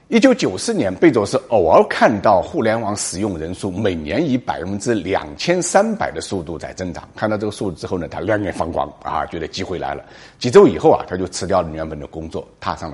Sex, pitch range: male, 85-135 Hz